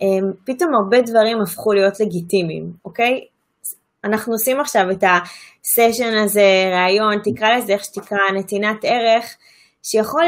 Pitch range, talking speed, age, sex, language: 205-300 Hz, 125 wpm, 20-39, female, Hebrew